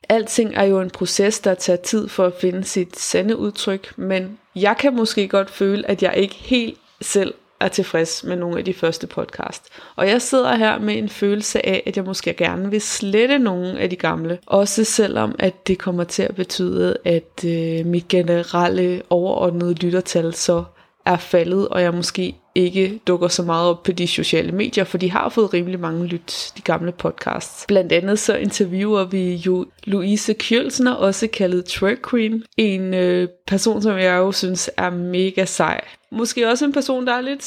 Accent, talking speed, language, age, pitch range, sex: native, 190 wpm, Danish, 20-39, 180-220 Hz, female